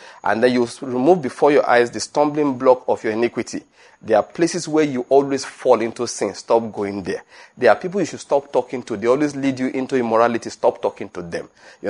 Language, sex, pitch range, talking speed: English, male, 125-160 Hz, 220 wpm